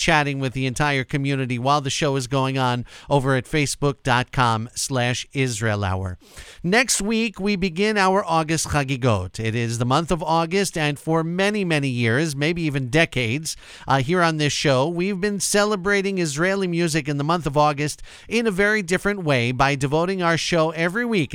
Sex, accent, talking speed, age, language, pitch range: male, American, 180 wpm, 40-59, English, 135-185 Hz